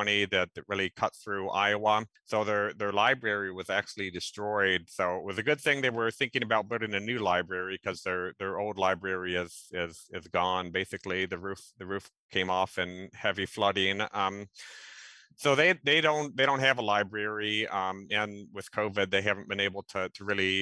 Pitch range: 95-110 Hz